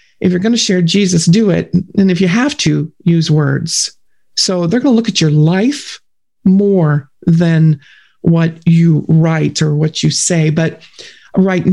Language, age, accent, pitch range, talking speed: English, 50-69, American, 165-210 Hz, 175 wpm